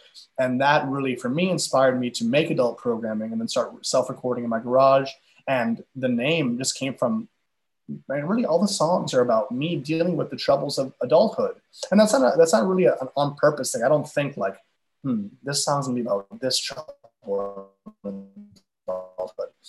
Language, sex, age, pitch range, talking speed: English, male, 20-39, 130-215 Hz, 190 wpm